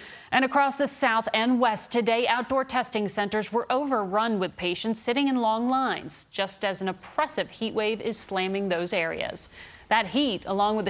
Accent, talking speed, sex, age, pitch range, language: American, 175 wpm, female, 40-59, 190-245 Hz, English